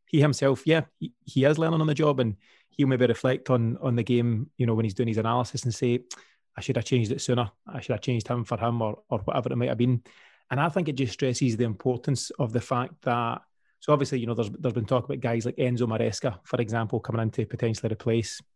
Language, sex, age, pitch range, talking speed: English, male, 30-49, 115-135 Hz, 250 wpm